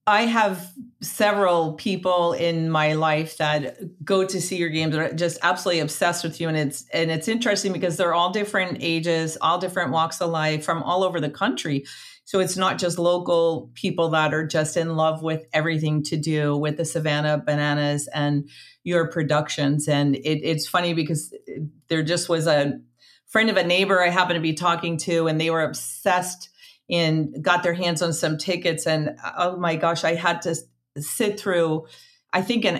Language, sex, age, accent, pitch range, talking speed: English, female, 40-59, American, 155-190 Hz, 190 wpm